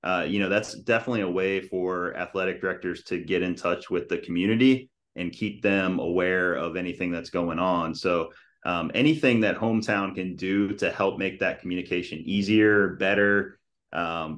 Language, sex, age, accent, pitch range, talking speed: English, male, 30-49, American, 90-100 Hz, 170 wpm